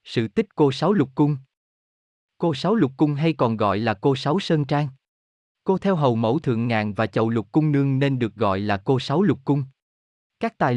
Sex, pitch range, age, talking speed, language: male, 115-155 Hz, 20-39, 215 wpm, Vietnamese